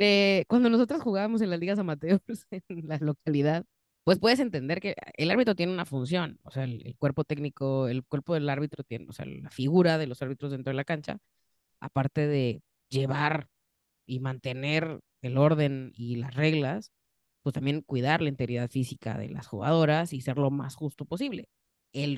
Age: 30-49